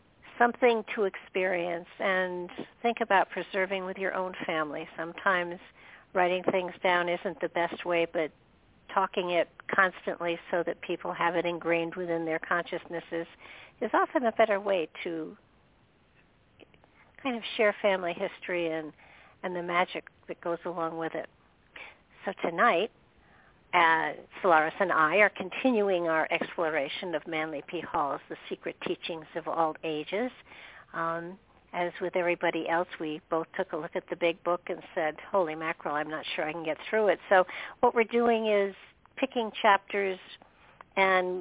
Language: English